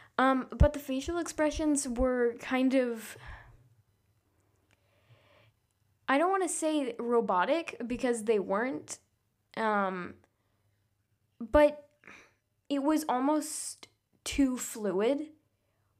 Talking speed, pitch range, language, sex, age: 90 wpm, 195-275 Hz, English, female, 10-29